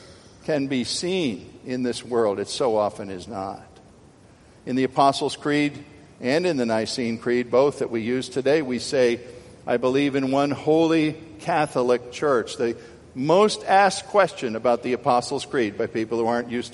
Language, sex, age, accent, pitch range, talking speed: English, male, 50-69, American, 130-190 Hz, 170 wpm